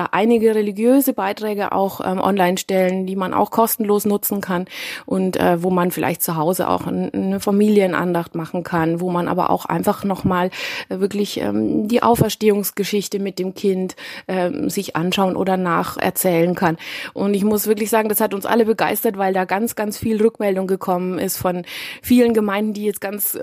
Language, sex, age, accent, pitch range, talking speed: German, female, 20-39, German, 185-220 Hz, 175 wpm